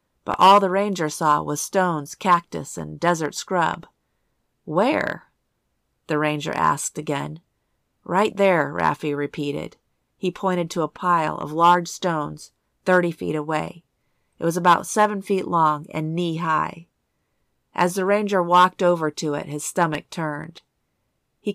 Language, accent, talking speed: English, American, 140 wpm